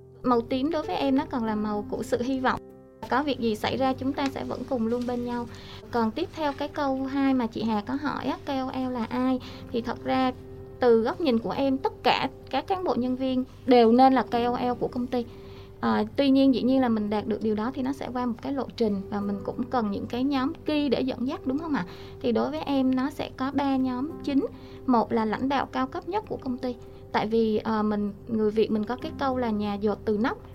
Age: 20-39